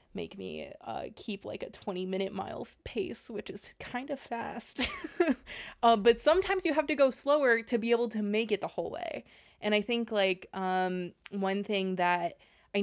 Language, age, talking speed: English, 20-39, 195 wpm